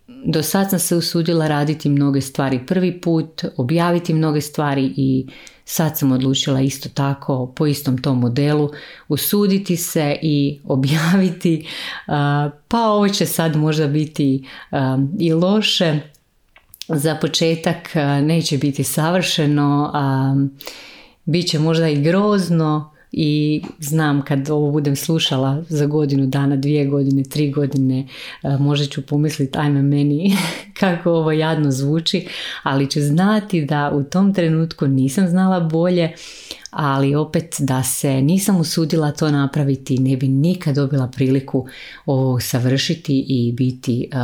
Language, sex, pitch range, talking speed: Croatian, female, 135-165 Hz, 130 wpm